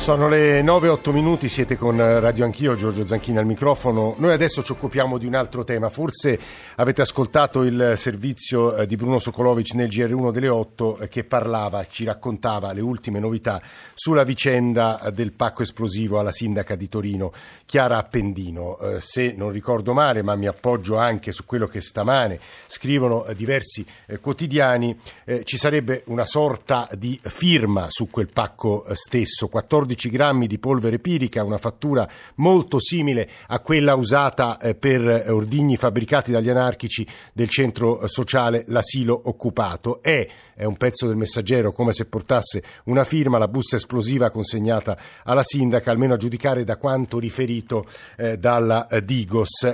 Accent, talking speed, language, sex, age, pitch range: native, 145 wpm, Italian, male, 50-69, 110-130 Hz